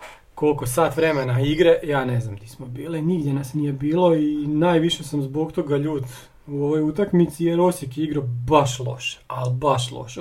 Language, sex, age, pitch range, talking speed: Croatian, male, 40-59, 135-165 Hz, 180 wpm